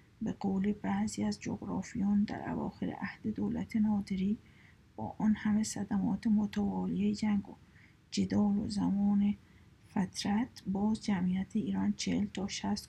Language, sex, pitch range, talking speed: Persian, female, 195-220 Hz, 125 wpm